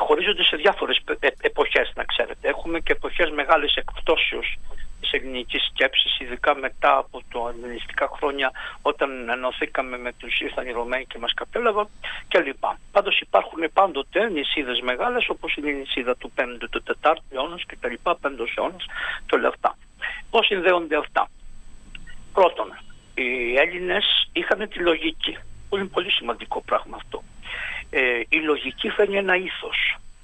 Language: English